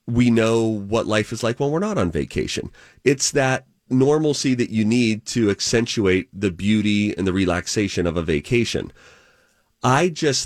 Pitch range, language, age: 95-120 Hz, English, 30-49